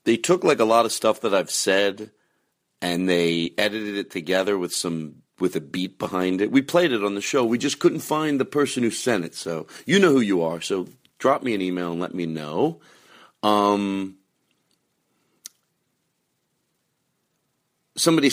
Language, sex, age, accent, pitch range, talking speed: English, male, 40-59, American, 85-110 Hz, 175 wpm